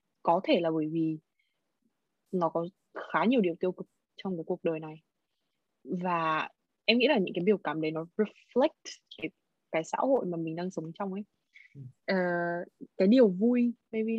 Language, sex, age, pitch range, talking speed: Vietnamese, female, 20-39, 170-220 Hz, 180 wpm